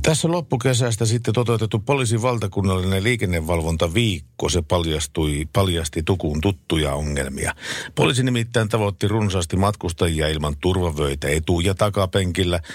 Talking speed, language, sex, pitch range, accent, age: 110 wpm, Finnish, male, 85-115 Hz, native, 50-69